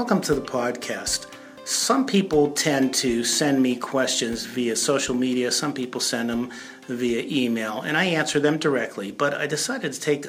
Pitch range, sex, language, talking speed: 115-140 Hz, male, English, 175 wpm